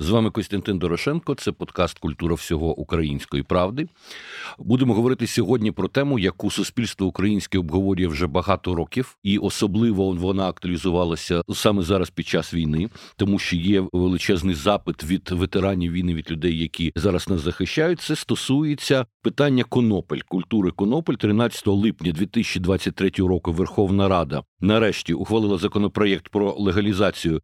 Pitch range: 90-110 Hz